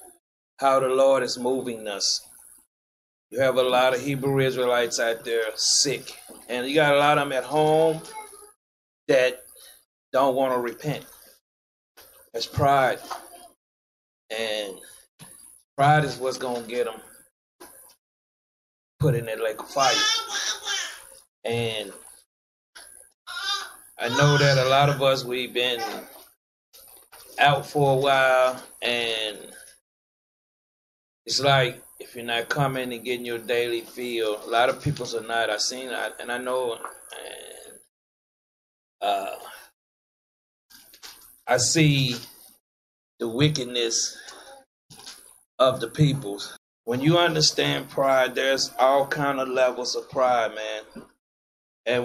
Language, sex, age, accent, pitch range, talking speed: English, male, 30-49, American, 120-150 Hz, 120 wpm